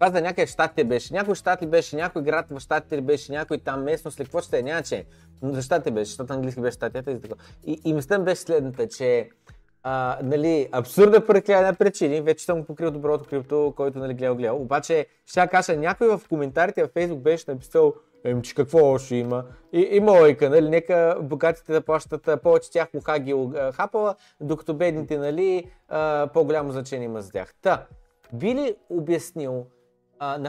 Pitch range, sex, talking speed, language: 135-185 Hz, male, 170 wpm, Bulgarian